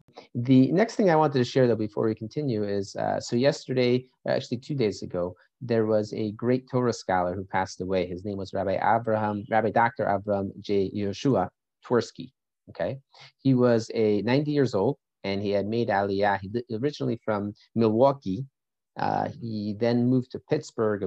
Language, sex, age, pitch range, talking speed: English, male, 30-49, 100-130 Hz, 175 wpm